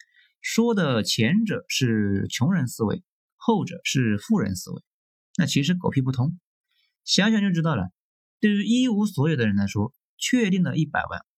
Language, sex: Chinese, male